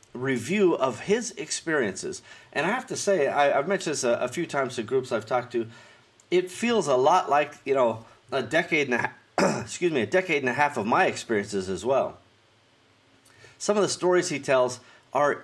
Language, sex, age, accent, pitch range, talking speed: English, male, 30-49, American, 120-175 Hz, 200 wpm